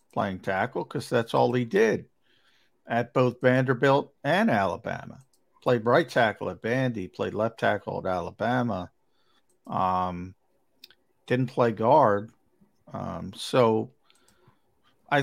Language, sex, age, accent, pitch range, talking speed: English, male, 50-69, American, 105-130 Hz, 115 wpm